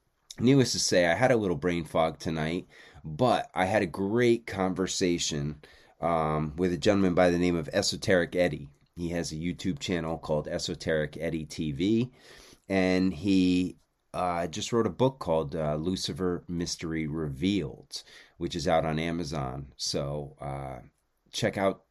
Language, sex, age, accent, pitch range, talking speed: English, male, 30-49, American, 75-95 Hz, 155 wpm